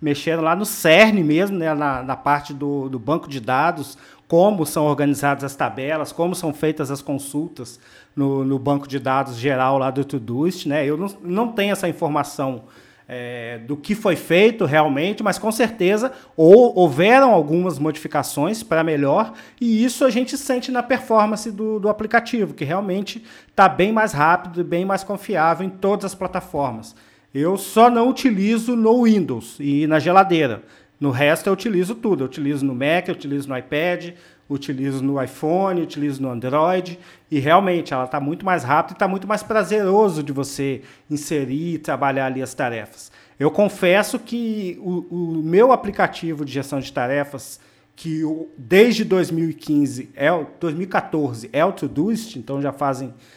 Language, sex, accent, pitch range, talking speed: Portuguese, male, Brazilian, 140-195 Hz, 170 wpm